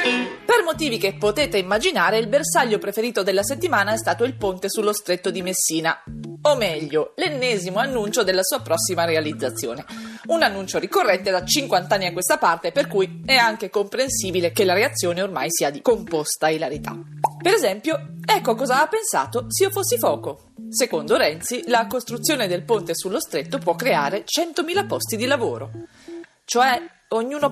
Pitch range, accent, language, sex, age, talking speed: 180-250 Hz, Italian, English, female, 30-49, 160 wpm